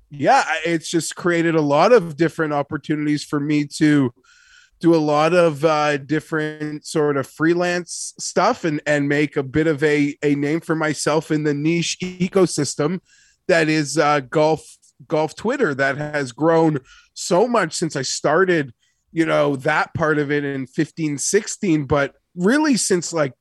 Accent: American